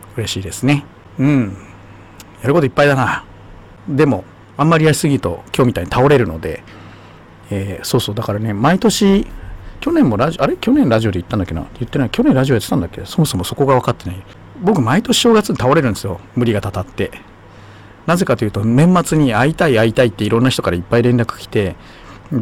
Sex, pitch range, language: male, 95-130 Hz, Japanese